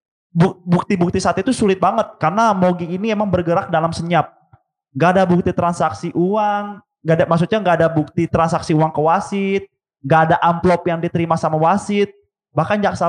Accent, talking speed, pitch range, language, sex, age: Indonesian, 165 wpm, 160-200 Hz, English, male, 20-39